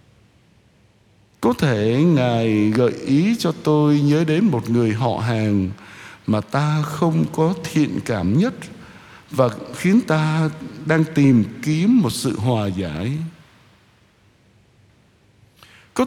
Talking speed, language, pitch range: 115 wpm, Vietnamese, 115-170 Hz